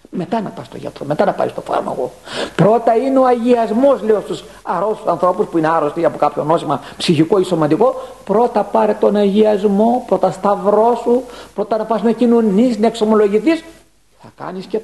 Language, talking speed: Greek, 180 wpm